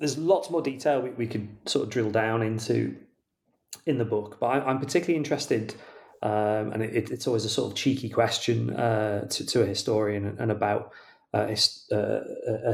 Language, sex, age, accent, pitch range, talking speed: English, male, 30-49, British, 105-125 Hz, 175 wpm